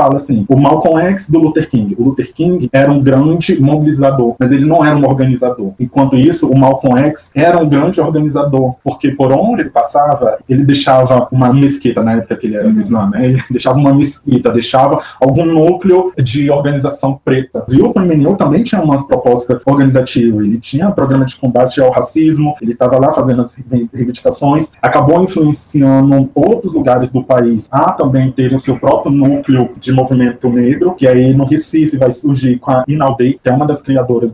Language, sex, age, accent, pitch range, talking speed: Portuguese, male, 20-39, Brazilian, 130-155 Hz, 190 wpm